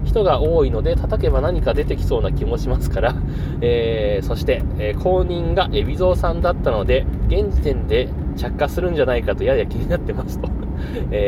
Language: Japanese